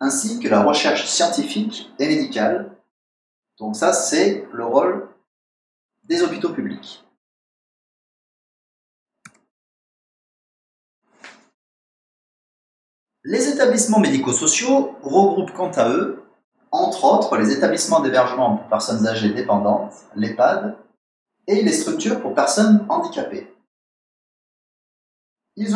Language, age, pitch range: French, 40-59, 145-230 Hz